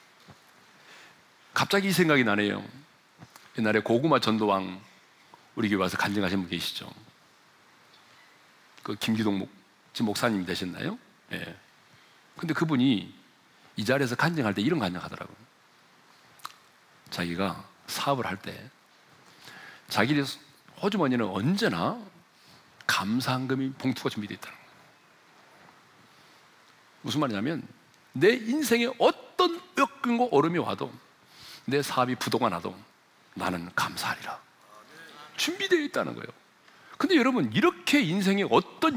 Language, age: Korean, 40-59